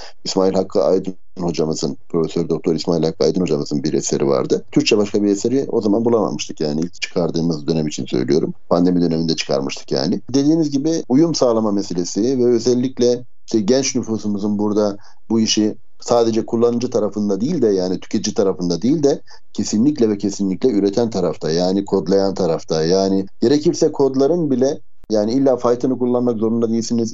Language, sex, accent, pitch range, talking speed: Turkish, male, native, 95-120 Hz, 155 wpm